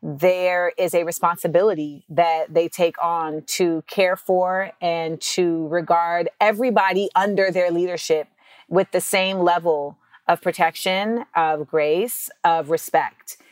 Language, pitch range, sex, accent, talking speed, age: English, 170-225 Hz, female, American, 125 wpm, 30-49